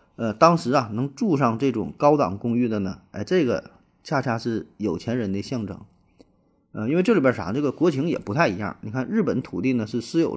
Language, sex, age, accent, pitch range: Chinese, male, 30-49, native, 105-140 Hz